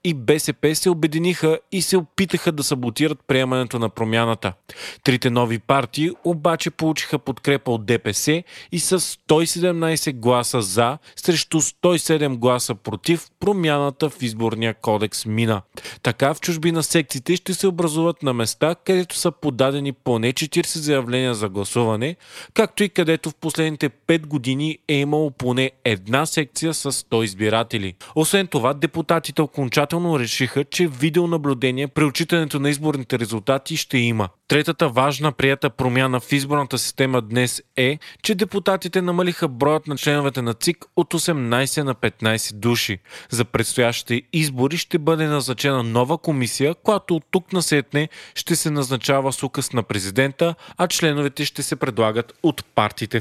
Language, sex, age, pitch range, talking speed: Bulgarian, male, 30-49, 125-165 Hz, 145 wpm